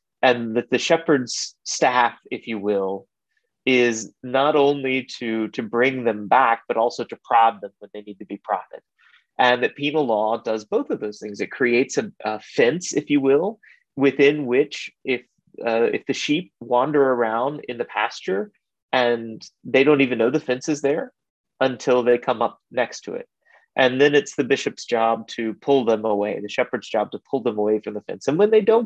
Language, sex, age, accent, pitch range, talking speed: English, male, 30-49, American, 110-145 Hz, 200 wpm